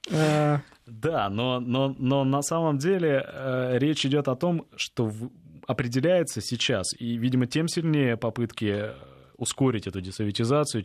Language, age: Russian, 20-39